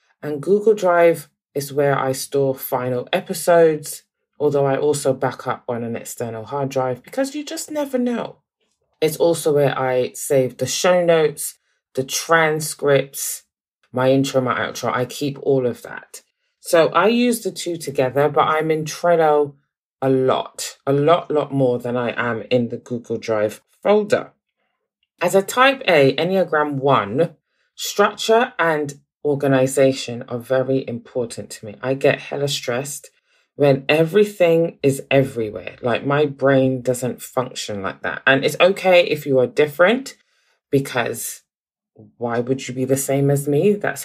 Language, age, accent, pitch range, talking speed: English, 20-39, British, 130-170 Hz, 155 wpm